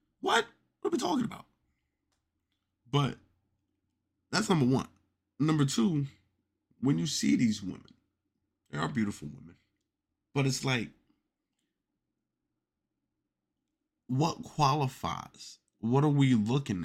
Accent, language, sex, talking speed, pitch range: American, English, male, 105 wpm, 95-130 Hz